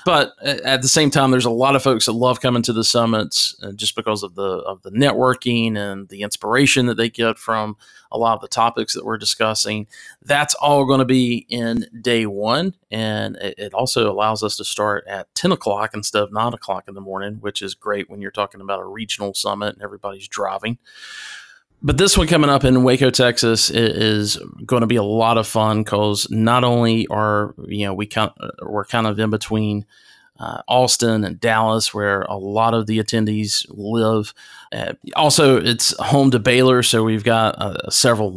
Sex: male